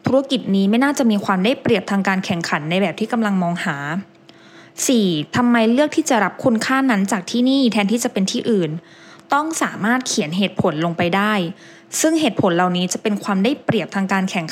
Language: English